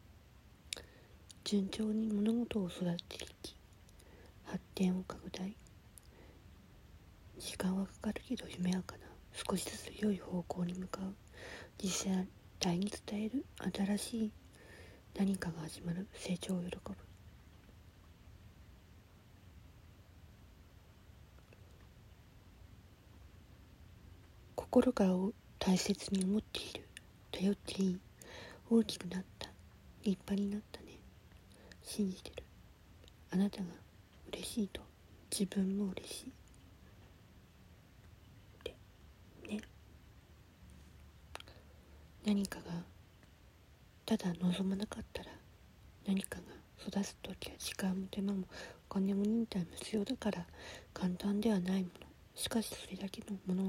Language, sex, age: Japanese, female, 40-59